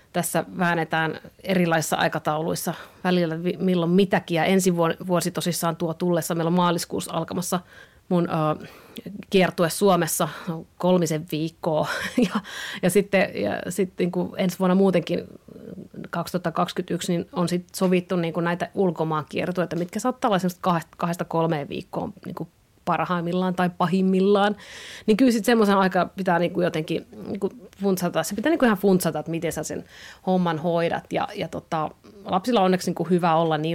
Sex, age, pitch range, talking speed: female, 30-49, 165-190 Hz, 155 wpm